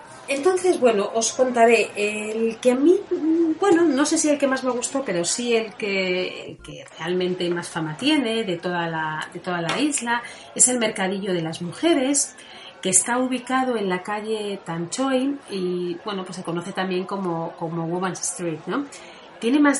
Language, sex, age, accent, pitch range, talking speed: Spanish, female, 30-49, Spanish, 175-245 Hz, 180 wpm